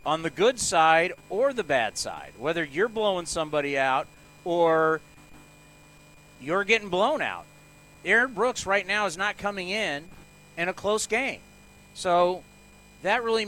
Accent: American